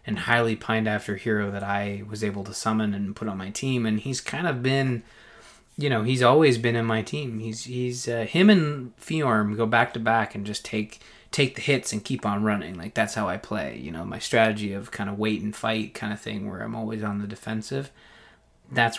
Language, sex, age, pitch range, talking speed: English, male, 20-39, 105-125 Hz, 235 wpm